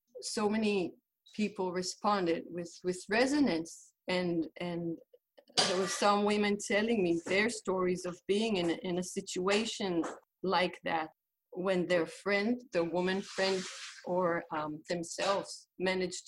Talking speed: 130 wpm